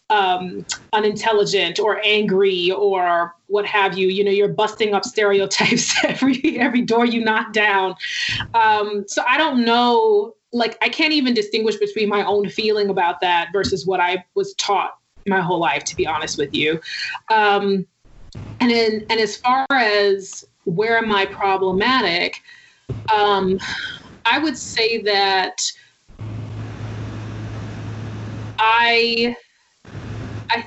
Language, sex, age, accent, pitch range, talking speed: English, female, 20-39, American, 190-230 Hz, 130 wpm